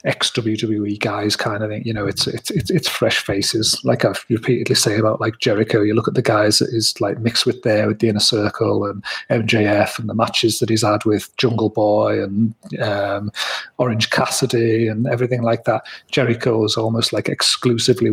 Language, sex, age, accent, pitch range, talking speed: English, male, 30-49, British, 105-125 Hz, 195 wpm